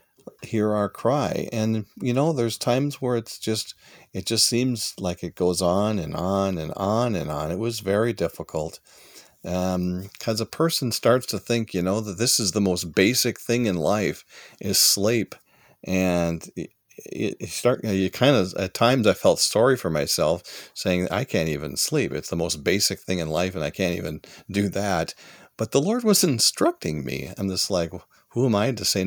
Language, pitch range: English, 90-115 Hz